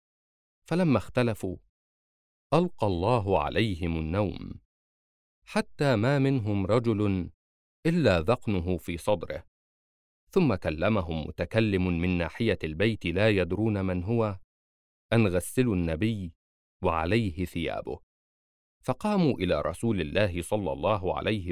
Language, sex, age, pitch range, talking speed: Arabic, male, 50-69, 80-110 Hz, 100 wpm